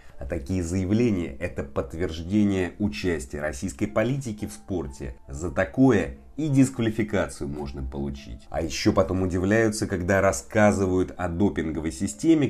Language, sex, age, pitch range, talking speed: Russian, male, 30-49, 70-105 Hz, 120 wpm